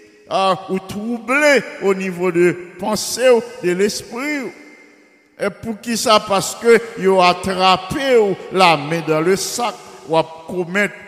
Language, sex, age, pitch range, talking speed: English, male, 50-69, 165-215 Hz, 145 wpm